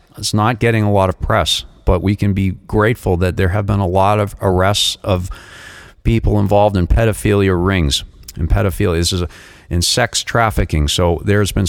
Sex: male